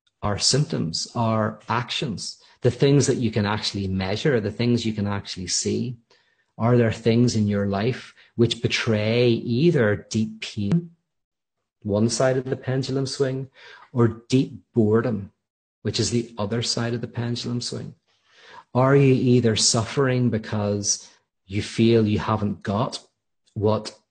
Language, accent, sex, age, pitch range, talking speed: English, Irish, male, 40-59, 105-120 Hz, 140 wpm